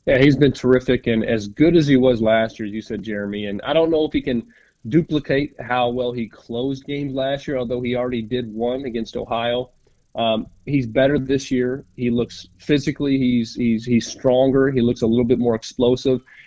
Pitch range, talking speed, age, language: 120-145 Hz, 205 wpm, 30-49, English